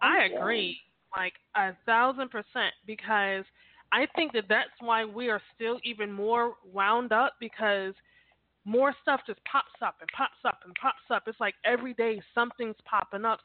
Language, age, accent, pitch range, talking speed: English, 20-39, American, 185-230 Hz, 170 wpm